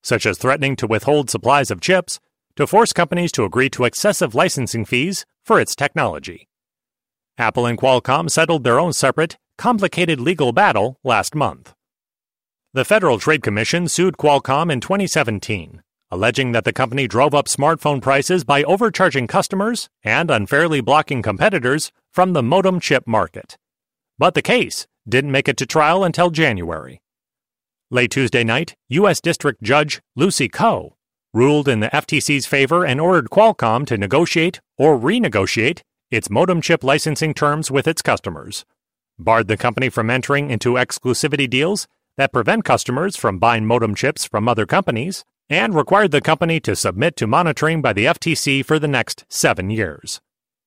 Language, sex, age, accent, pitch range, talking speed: English, male, 30-49, American, 120-165 Hz, 155 wpm